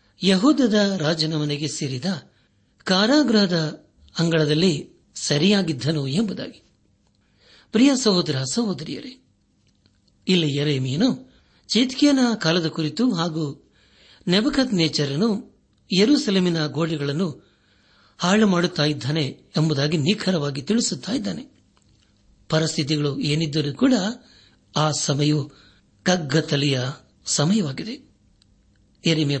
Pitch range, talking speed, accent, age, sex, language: 150-210 Hz, 65 wpm, native, 60-79, male, Kannada